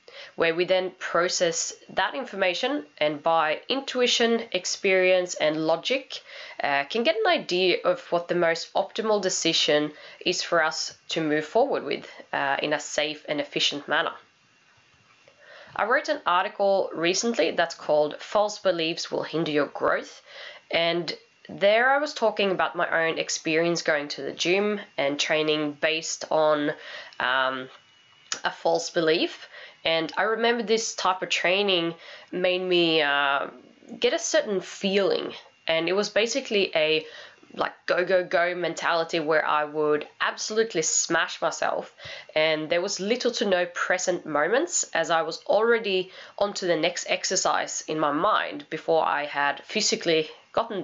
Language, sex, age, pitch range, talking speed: English, female, 10-29, 160-210 Hz, 150 wpm